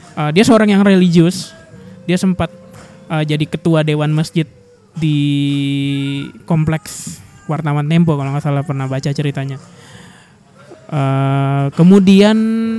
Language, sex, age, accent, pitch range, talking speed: Indonesian, male, 20-39, native, 155-190 Hz, 115 wpm